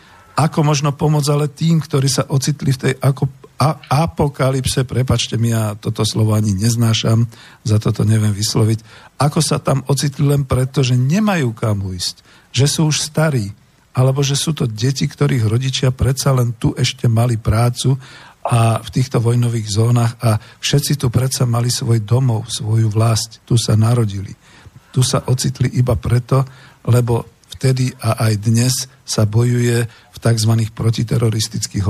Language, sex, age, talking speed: Slovak, male, 50-69, 155 wpm